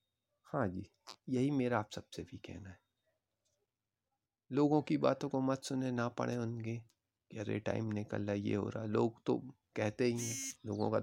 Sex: male